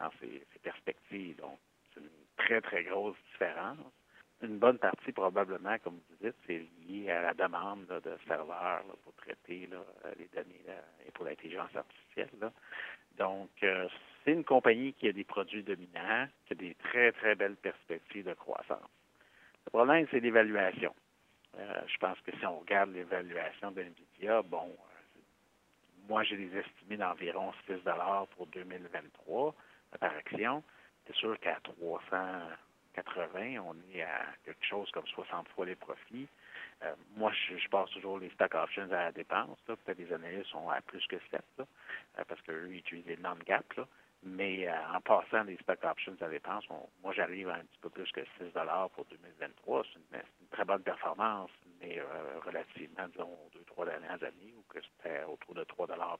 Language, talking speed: French, 180 wpm